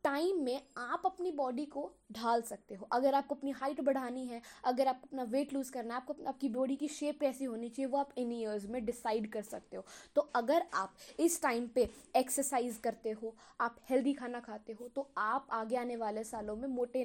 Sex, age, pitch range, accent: female, 20-39, 240-295 Hz, native